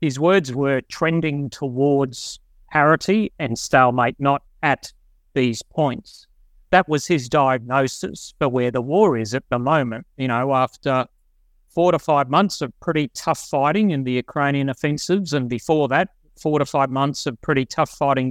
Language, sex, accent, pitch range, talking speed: English, male, Australian, 135-160 Hz, 165 wpm